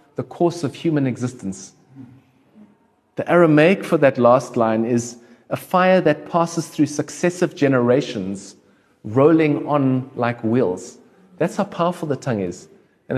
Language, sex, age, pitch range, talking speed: English, male, 40-59, 120-165 Hz, 135 wpm